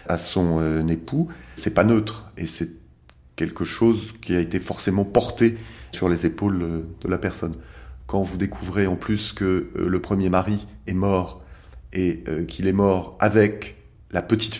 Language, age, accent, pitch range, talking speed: French, 30-49, French, 90-110 Hz, 175 wpm